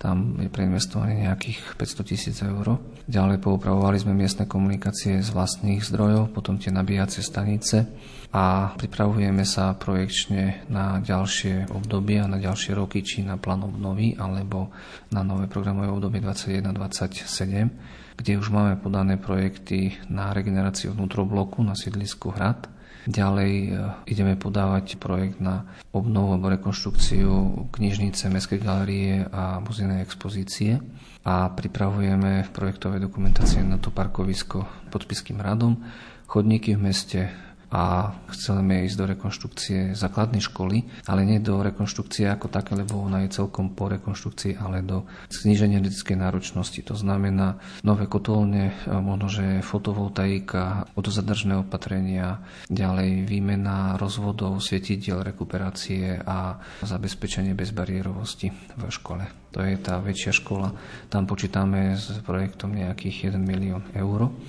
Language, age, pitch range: Slovak, 40-59, 95-100 Hz